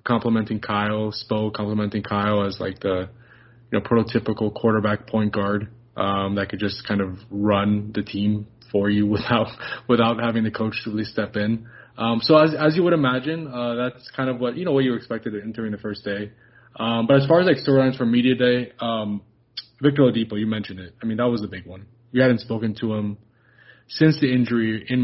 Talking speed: 210 wpm